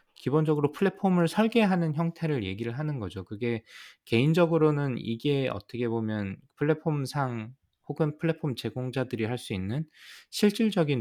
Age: 20-39